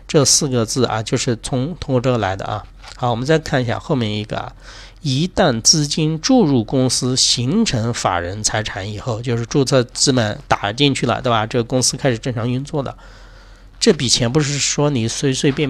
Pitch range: 110-140 Hz